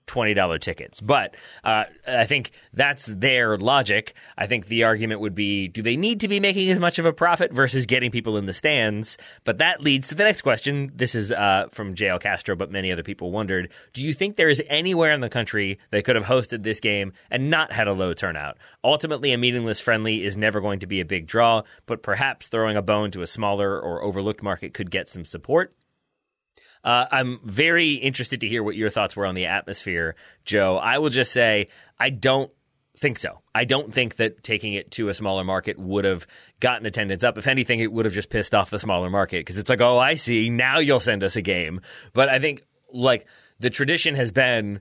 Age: 30-49